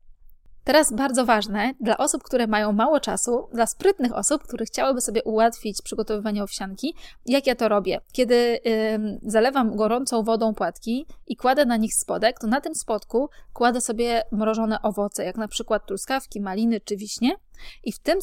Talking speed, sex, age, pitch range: 165 wpm, female, 20-39, 210-250 Hz